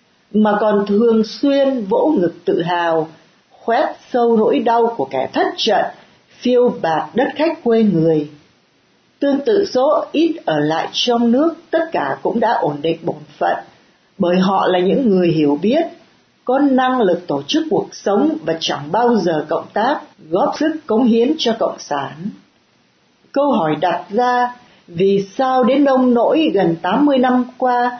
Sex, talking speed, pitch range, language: female, 165 wpm, 175-265 Hz, Vietnamese